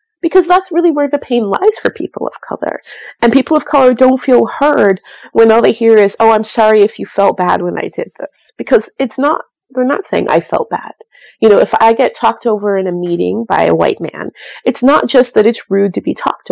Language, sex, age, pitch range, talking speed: English, female, 30-49, 205-260 Hz, 240 wpm